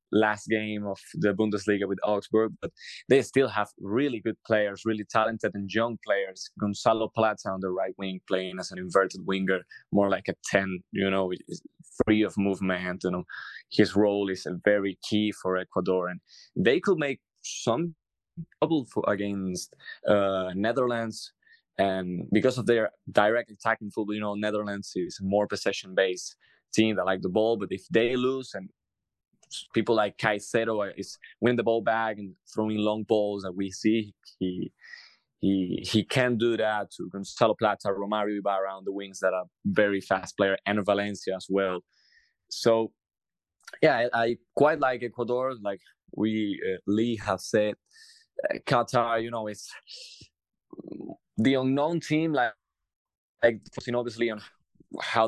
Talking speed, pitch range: 155 wpm, 95-115 Hz